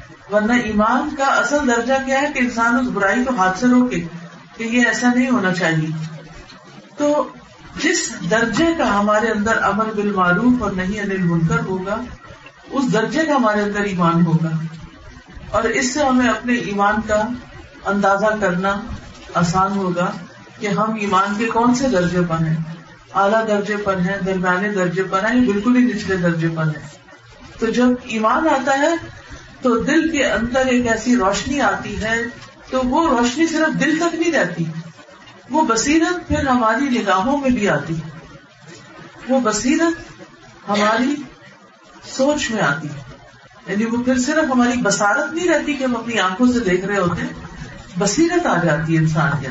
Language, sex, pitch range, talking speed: Urdu, female, 185-260 Hz, 160 wpm